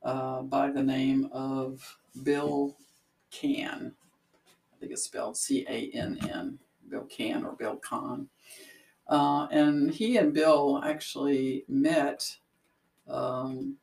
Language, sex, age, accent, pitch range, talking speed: English, female, 60-79, American, 135-160 Hz, 120 wpm